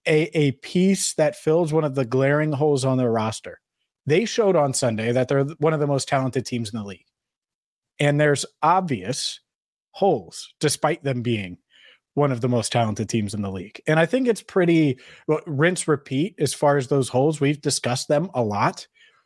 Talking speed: 190 wpm